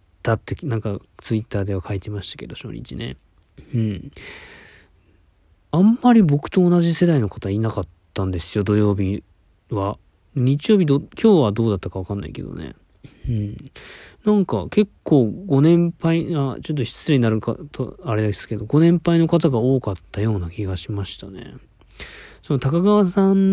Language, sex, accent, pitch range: Japanese, male, native, 105-155 Hz